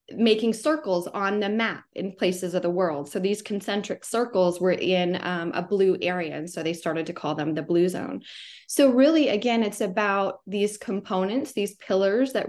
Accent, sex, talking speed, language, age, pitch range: American, female, 190 wpm, English, 20-39, 175-205 Hz